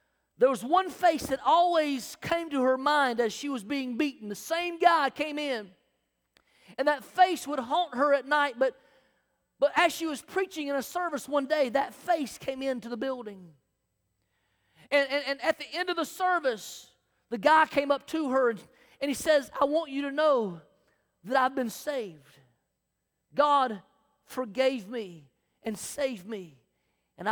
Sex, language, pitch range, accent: male, English, 225-310 Hz, American